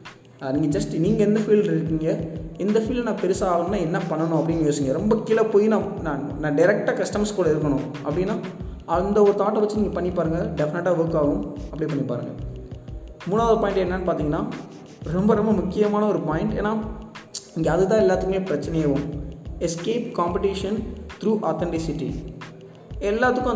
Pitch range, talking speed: 150-190 Hz, 150 wpm